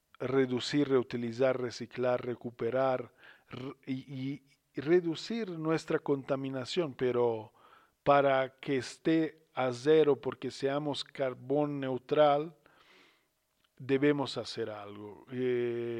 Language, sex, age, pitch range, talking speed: Spanish, male, 40-59, 130-160 Hz, 90 wpm